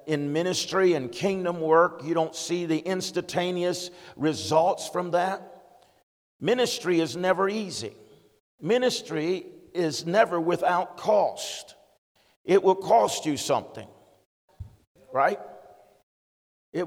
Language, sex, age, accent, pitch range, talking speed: English, male, 50-69, American, 150-185 Hz, 105 wpm